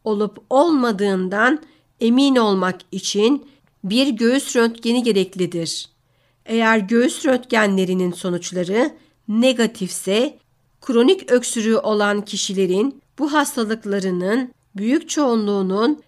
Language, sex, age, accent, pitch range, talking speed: Turkish, female, 50-69, native, 190-240 Hz, 80 wpm